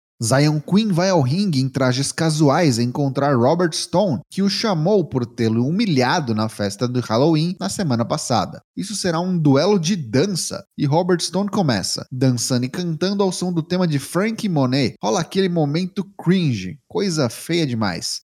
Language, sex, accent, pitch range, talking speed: Portuguese, male, Brazilian, 130-185 Hz, 165 wpm